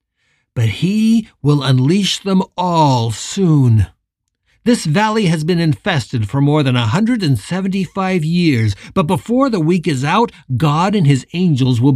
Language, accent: English, American